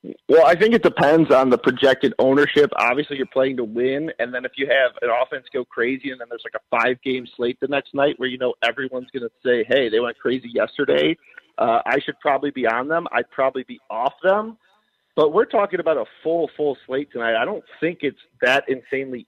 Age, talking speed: 40-59, 225 wpm